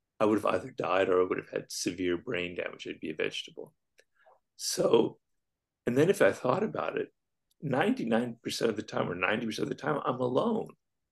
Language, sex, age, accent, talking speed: English, male, 50-69, American, 195 wpm